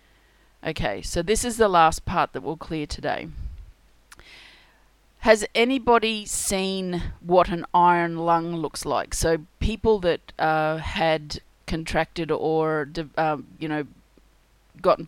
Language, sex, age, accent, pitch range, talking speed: English, female, 30-49, Australian, 155-190 Hz, 125 wpm